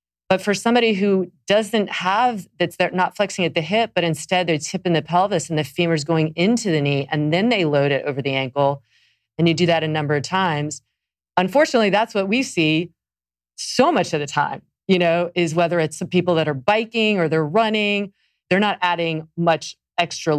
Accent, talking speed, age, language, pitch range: American, 205 wpm, 30-49, English, 145-180 Hz